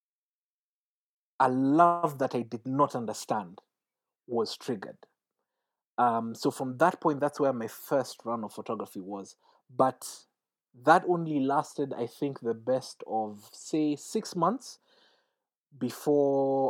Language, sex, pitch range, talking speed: English, male, 120-175 Hz, 125 wpm